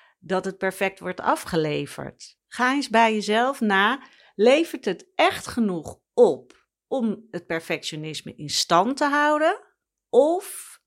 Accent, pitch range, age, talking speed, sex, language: Dutch, 185-245 Hz, 40-59, 125 wpm, female, Dutch